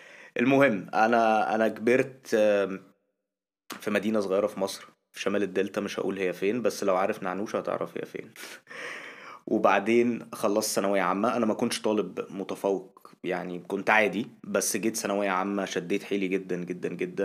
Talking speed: 155 wpm